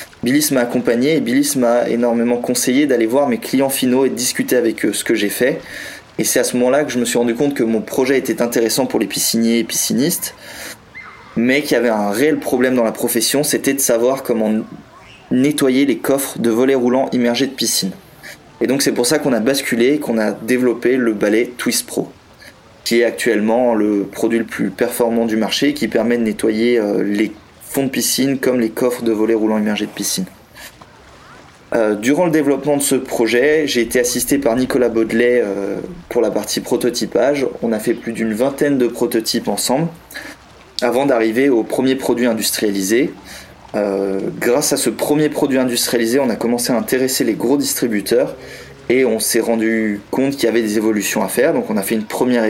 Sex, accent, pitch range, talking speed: male, French, 110-130 Hz, 200 wpm